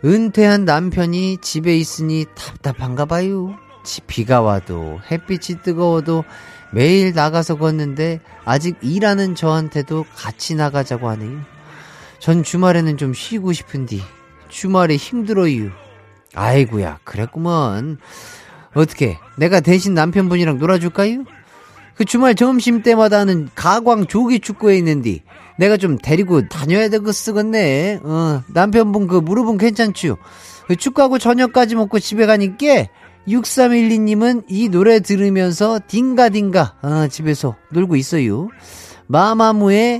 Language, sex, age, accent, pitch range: Korean, male, 40-59, native, 135-210 Hz